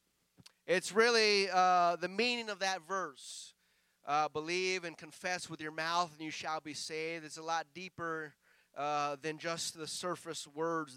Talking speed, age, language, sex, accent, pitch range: 165 wpm, 30-49, English, male, American, 155-195 Hz